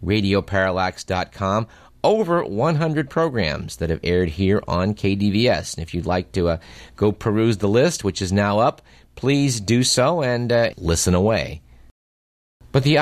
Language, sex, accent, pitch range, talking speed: English, male, American, 95-130 Hz, 150 wpm